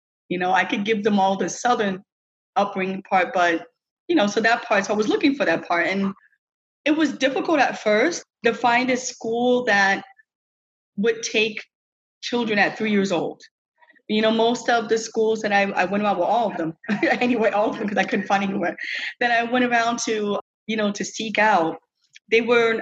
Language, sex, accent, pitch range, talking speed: English, female, American, 195-235 Hz, 205 wpm